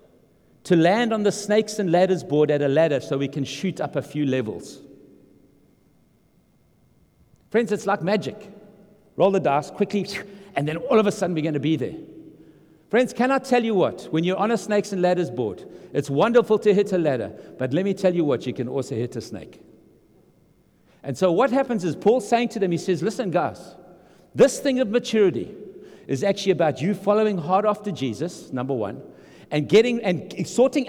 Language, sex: English, male